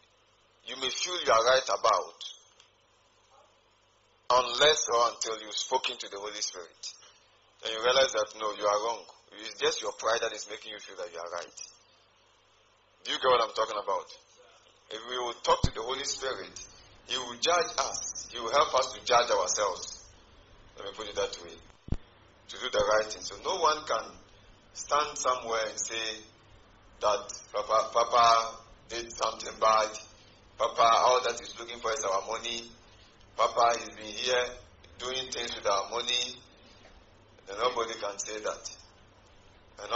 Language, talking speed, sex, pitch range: English, 170 wpm, male, 105-125 Hz